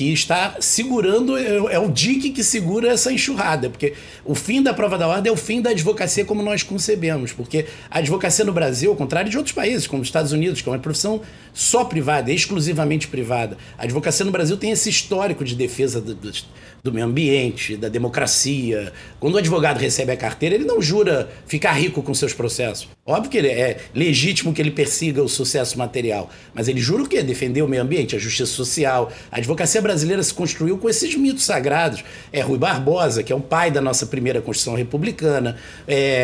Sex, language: male, Portuguese